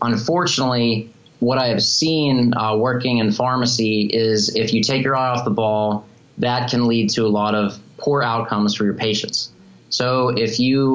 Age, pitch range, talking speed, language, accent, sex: 20-39, 115-130 Hz, 180 wpm, English, American, male